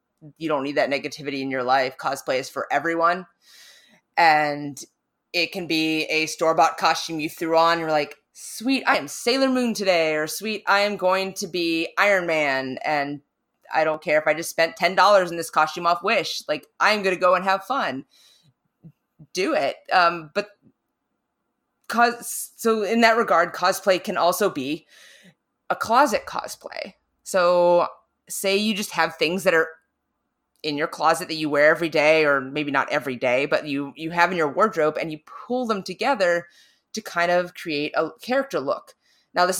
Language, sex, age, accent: English, female, 20-39, American